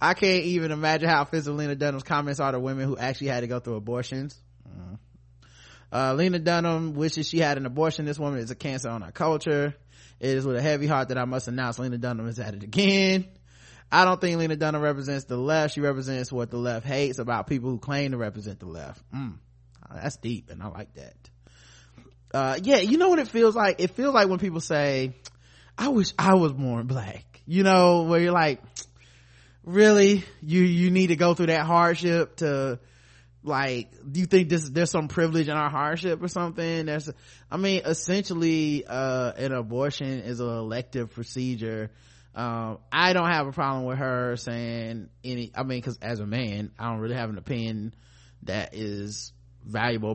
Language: English